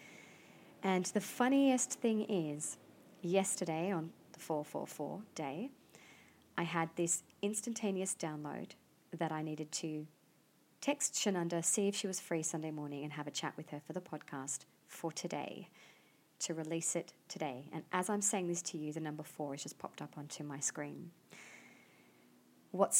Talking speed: 160 wpm